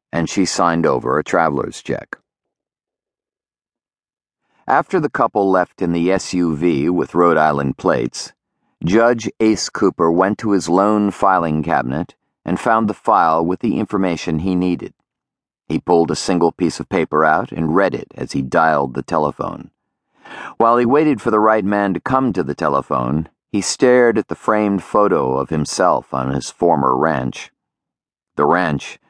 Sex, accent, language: male, American, English